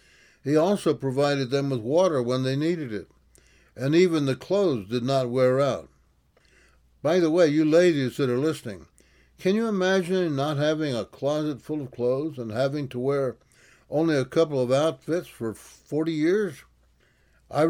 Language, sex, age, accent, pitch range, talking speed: English, male, 60-79, American, 120-165 Hz, 165 wpm